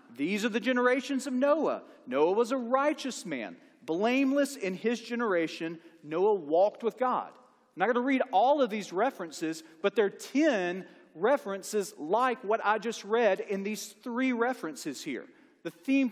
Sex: male